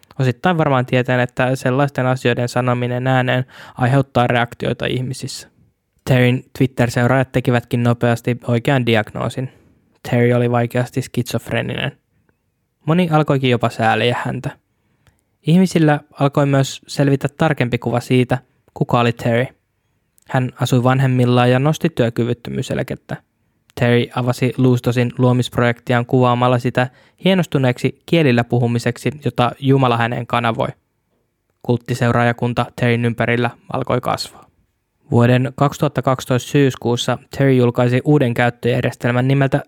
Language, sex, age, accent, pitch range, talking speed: Finnish, male, 10-29, native, 120-130 Hz, 105 wpm